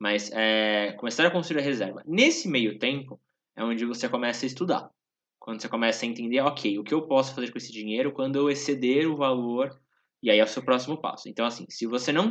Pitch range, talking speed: 115-145 Hz, 230 wpm